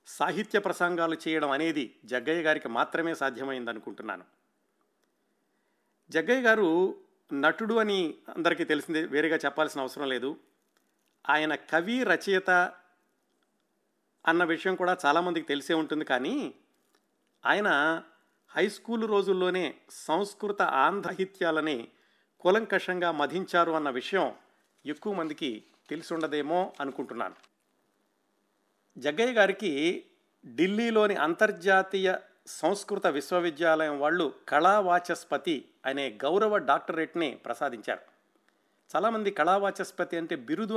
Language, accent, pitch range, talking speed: Telugu, native, 150-195 Hz, 85 wpm